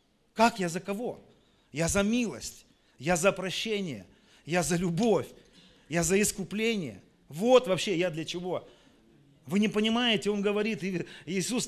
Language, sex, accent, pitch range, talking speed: Russian, male, native, 160-215 Hz, 140 wpm